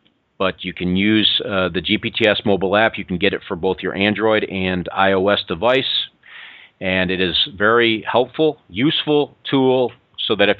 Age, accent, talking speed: 40-59, American, 170 wpm